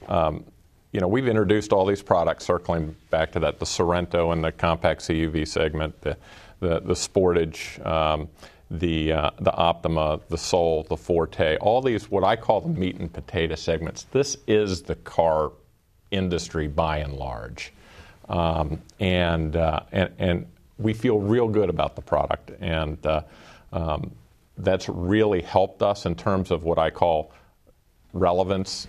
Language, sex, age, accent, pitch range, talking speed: English, male, 40-59, American, 80-95 Hz, 160 wpm